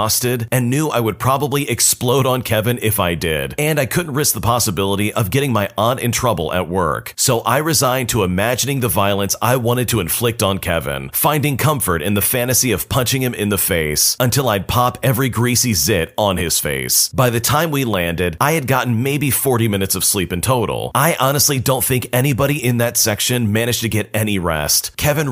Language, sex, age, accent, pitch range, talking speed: English, male, 40-59, American, 100-130 Hz, 210 wpm